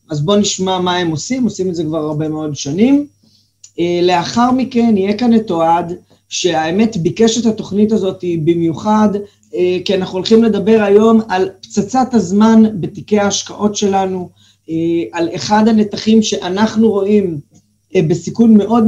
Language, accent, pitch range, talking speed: Hebrew, native, 170-220 Hz, 135 wpm